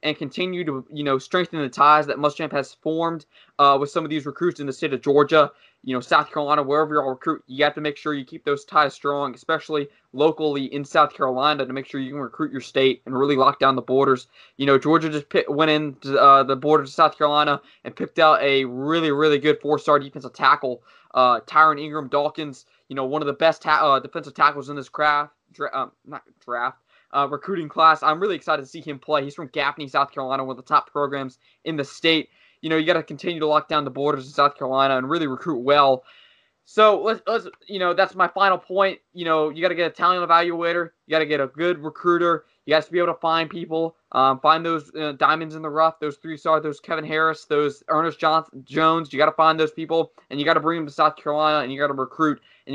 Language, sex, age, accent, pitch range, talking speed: English, male, 20-39, American, 140-160 Hz, 245 wpm